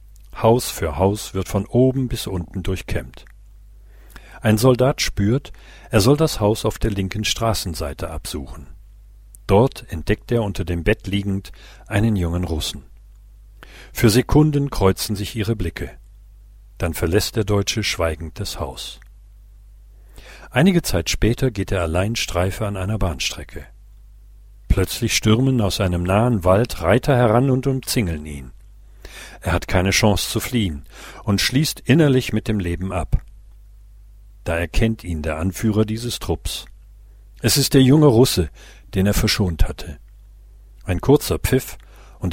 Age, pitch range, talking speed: 50-69, 95-115 Hz, 140 wpm